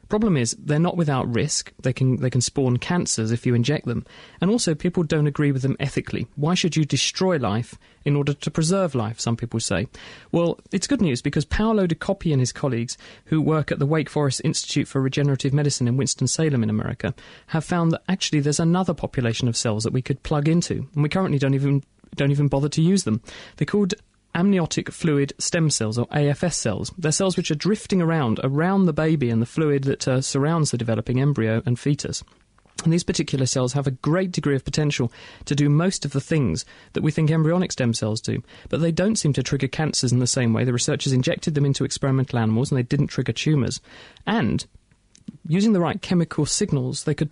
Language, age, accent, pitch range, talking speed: English, 40-59, British, 125-165 Hz, 215 wpm